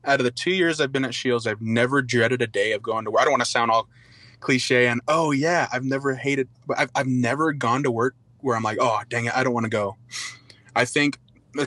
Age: 20-39